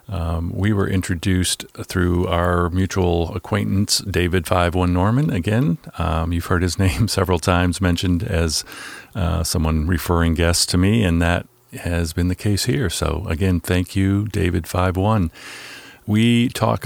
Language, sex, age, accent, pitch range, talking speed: English, male, 50-69, American, 85-105 Hz, 145 wpm